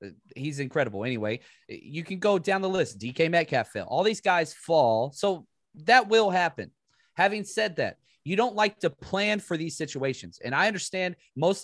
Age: 30-49